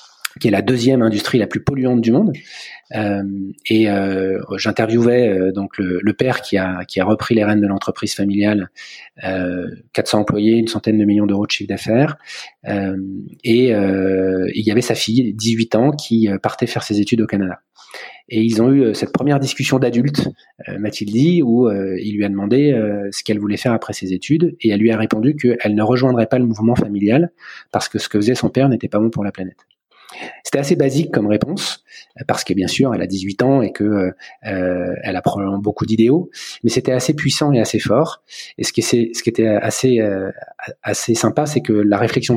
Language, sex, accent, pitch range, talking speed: French, male, French, 100-125 Hz, 210 wpm